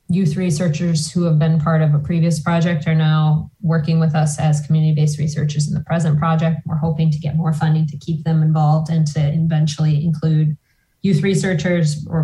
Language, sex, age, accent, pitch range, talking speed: English, female, 20-39, American, 155-170 Hz, 190 wpm